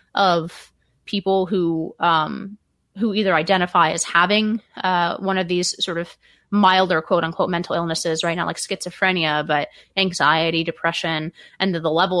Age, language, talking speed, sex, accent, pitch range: 20-39, English, 150 wpm, female, American, 165-200 Hz